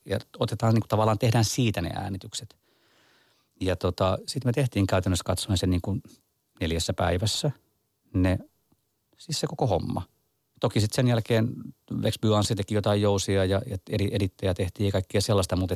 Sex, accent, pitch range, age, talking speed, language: male, native, 95-110 Hz, 30-49, 150 wpm, Finnish